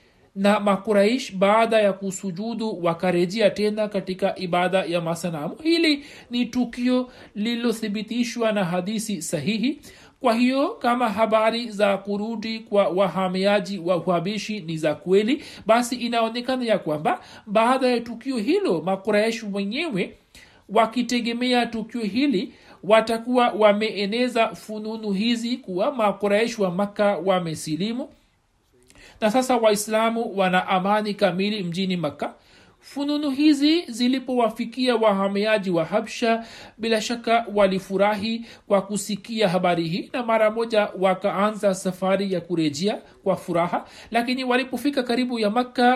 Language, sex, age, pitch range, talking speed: Swahili, male, 60-79, 195-235 Hz, 115 wpm